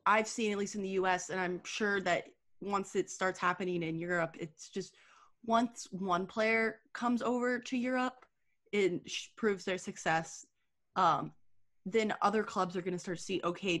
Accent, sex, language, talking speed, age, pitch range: American, female, English, 185 wpm, 20-39, 165-210 Hz